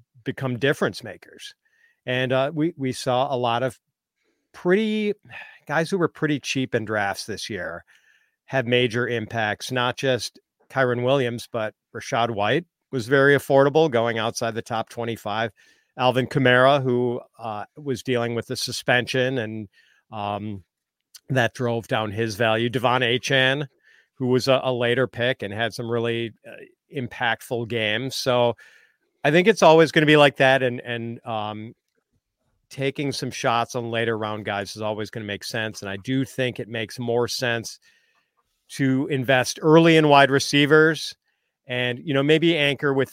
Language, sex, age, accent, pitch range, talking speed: English, male, 40-59, American, 115-135 Hz, 160 wpm